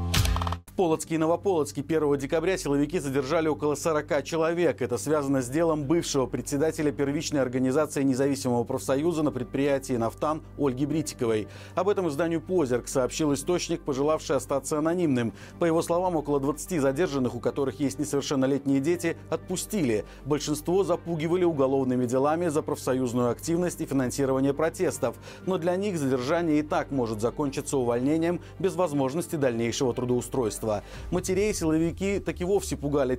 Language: Russian